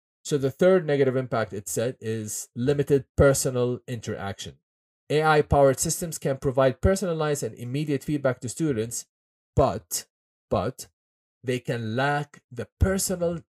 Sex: male